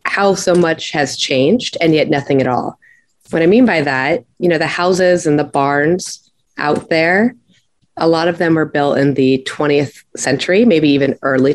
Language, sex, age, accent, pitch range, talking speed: English, female, 20-39, American, 135-170 Hz, 190 wpm